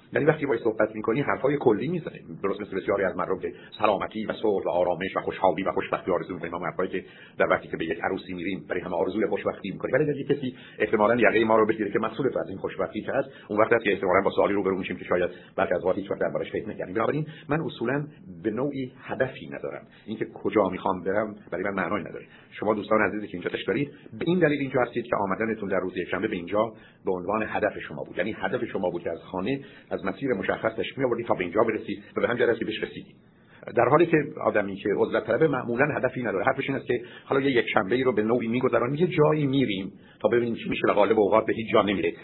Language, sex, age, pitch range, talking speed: Persian, male, 50-69, 105-140 Hz, 225 wpm